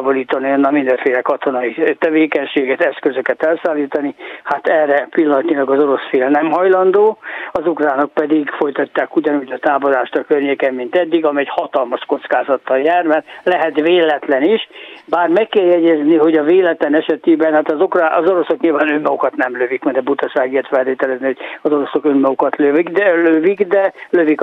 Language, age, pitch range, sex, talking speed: Hungarian, 60-79, 145-175 Hz, male, 155 wpm